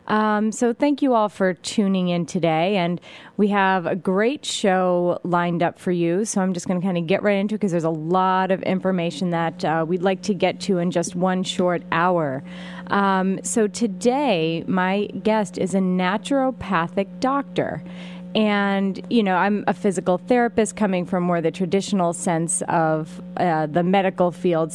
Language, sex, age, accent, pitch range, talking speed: English, female, 30-49, American, 175-205 Hz, 180 wpm